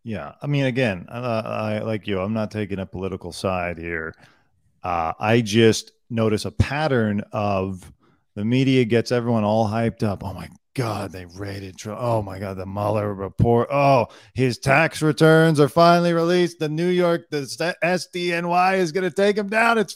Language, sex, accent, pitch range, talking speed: English, male, American, 105-165 Hz, 175 wpm